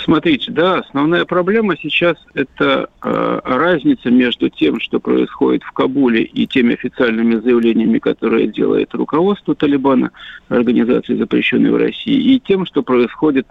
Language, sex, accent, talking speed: Russian, male, native, 135 wpm